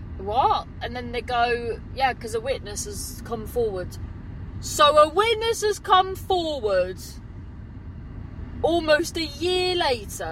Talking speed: 130 wpm